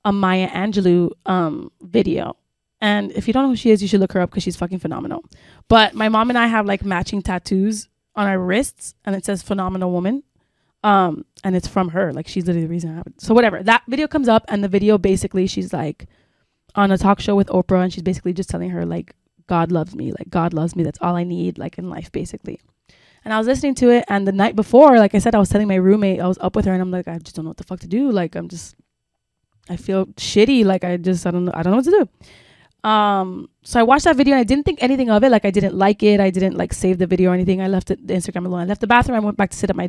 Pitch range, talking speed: 180-215 Hz, 285 wpm